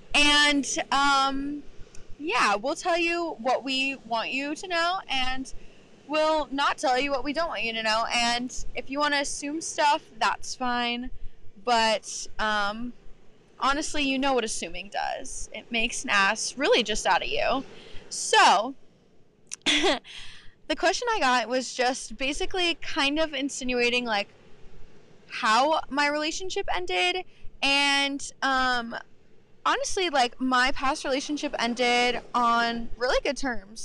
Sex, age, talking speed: female, 20-39, 135 wpm